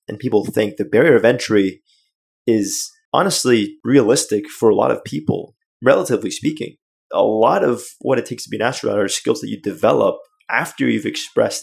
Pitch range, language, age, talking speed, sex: 110-135 Hz, English, 20-39, 180 wpm, male